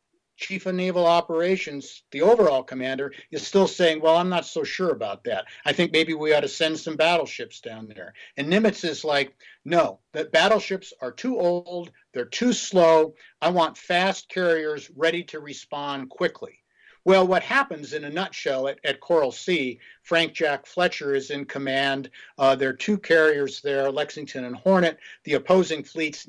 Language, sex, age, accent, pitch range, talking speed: English, male, 50-69, American, 145-185 Hz, 175 wpm